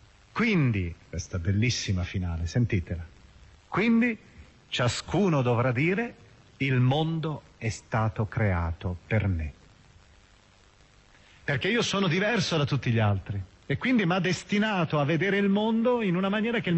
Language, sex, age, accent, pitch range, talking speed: Italian, male, 40-59, native, 100-155 Hz, 135 wpm